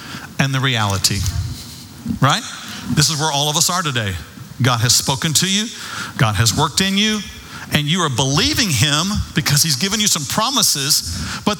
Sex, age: male, 50-69